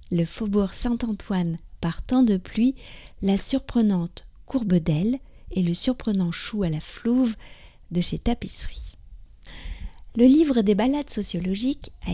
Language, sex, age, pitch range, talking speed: French, female, 40-59, 180-235 Hz, 135 wpm